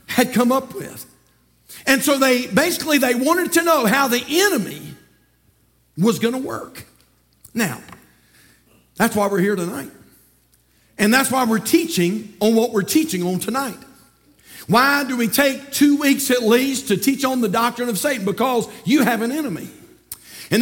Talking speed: 165 wpm